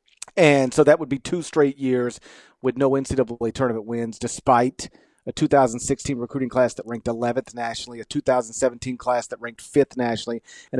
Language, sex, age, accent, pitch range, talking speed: English, male, 40-59, American, 120-155 Hz, 165 wpm